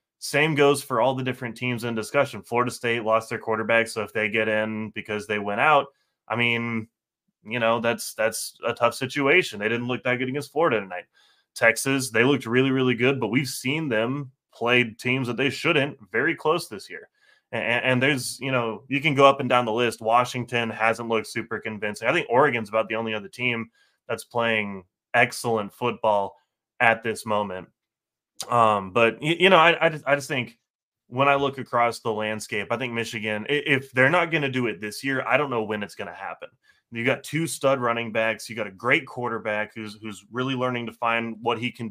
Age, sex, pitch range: 20-39, male, 110-130 Hz